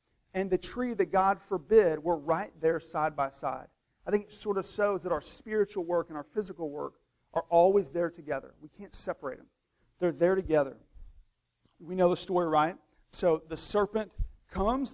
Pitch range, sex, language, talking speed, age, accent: 165-200 Hz, male, English, 185 wpm, 40-59, American